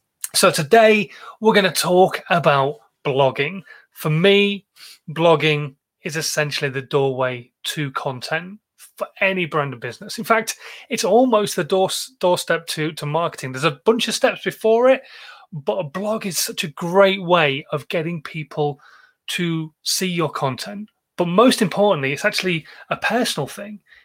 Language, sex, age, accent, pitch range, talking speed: English, male, 30-49, British, 150-200 Hz, 155 wpm